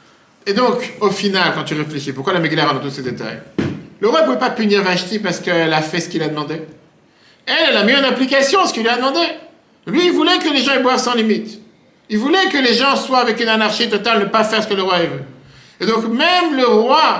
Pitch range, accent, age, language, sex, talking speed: 165-235 Hz, French, 50-69, French, male, 255 wpm